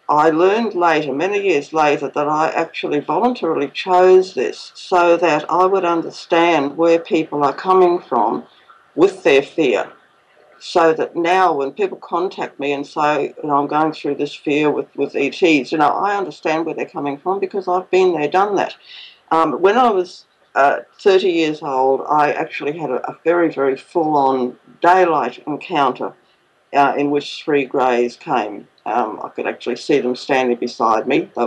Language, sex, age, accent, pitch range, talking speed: English, female, 60-79, Australian, 140-180 Hz, 170 wpm